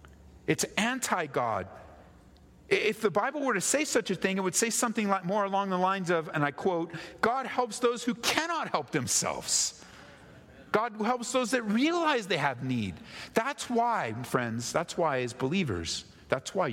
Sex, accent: male, American